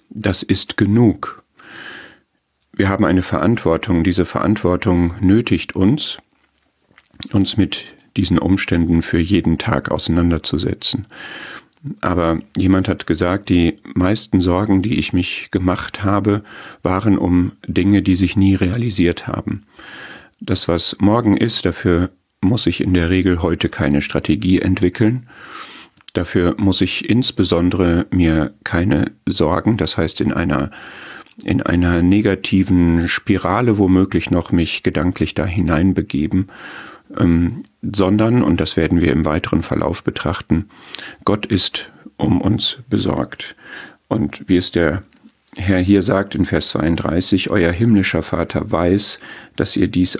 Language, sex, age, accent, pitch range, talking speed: German, male, 40-59, German, 85-100 Hz, 125 wpm